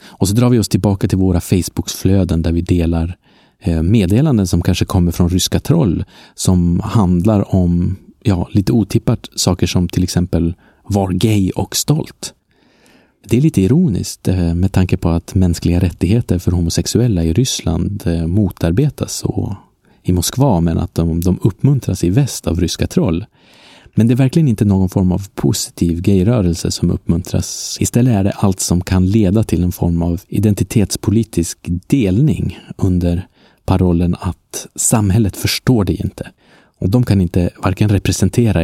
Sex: male